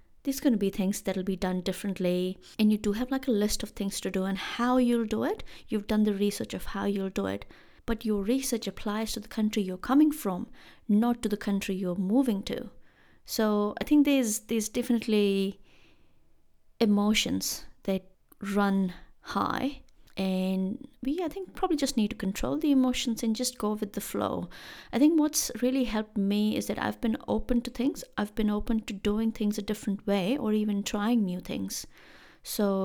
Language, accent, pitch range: English, Indian, 200-250 Hz